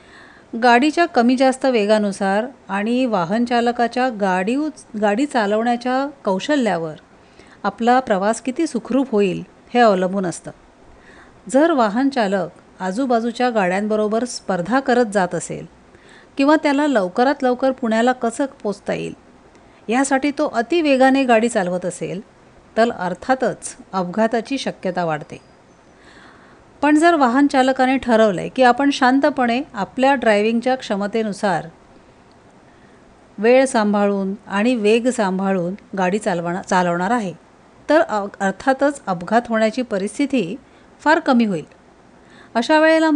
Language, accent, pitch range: Marathi, native, 200-260 Hz